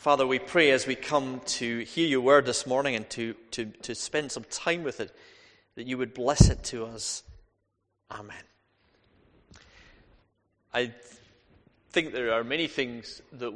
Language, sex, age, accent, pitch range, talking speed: English, male, 30-49, British, 120-155 Hz, 160 wpm